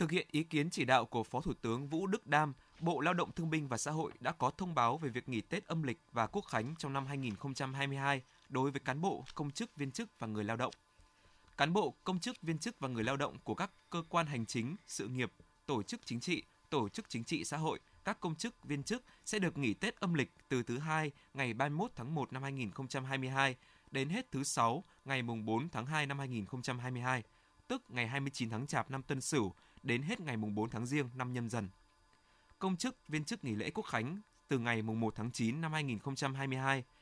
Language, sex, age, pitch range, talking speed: Vietnamese, male, 20-39, 120-160 Hz, 230 wpm